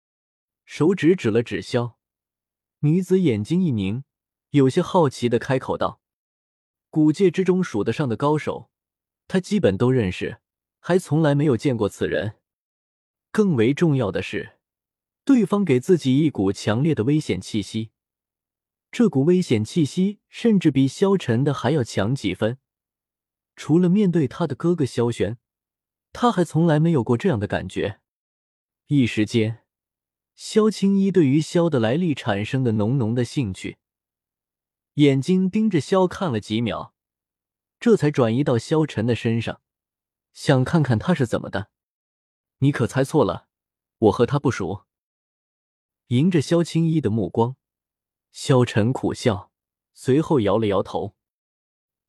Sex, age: male, 20-39